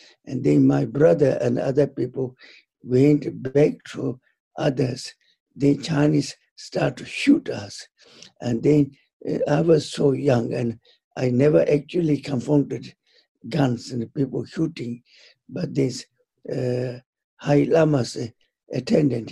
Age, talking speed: 60-79, 120 wpm